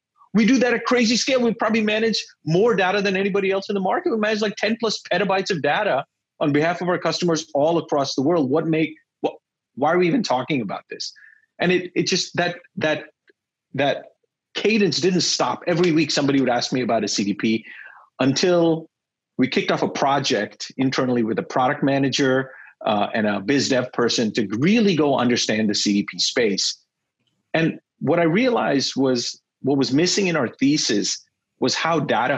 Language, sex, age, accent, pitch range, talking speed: English, male, 30-49, American, 135-190 Hz, 185 wpm